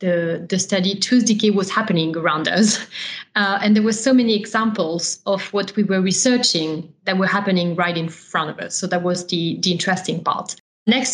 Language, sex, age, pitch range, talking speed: English, female, 30-49, 175-220 Hz, 195 wpm